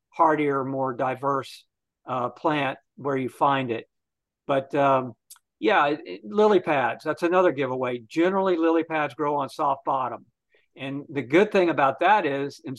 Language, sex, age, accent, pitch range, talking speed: English, male, 50-69, American, 135-165 Hz, 150 wpm